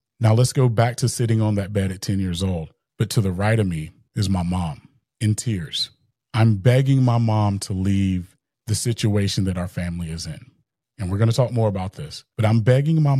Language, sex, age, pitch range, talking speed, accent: English, male, 30-49, 100-125 Hz, 225 wpm, American